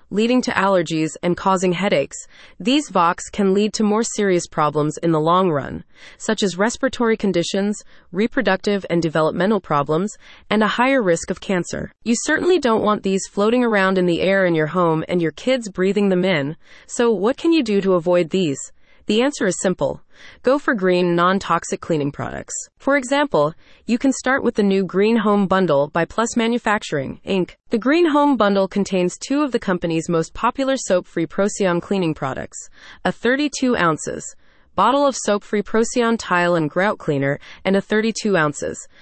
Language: English